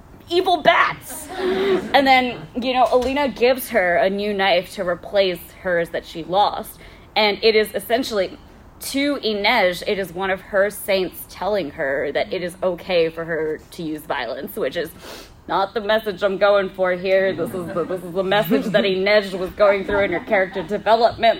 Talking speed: 185 wpm